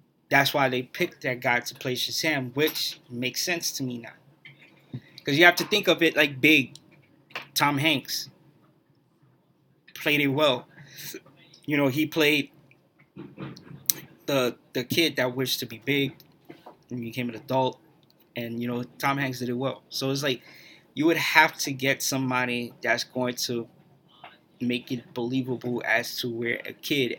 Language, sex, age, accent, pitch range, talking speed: English, male, 20-39, American, 125-155 Hz, 160 wpm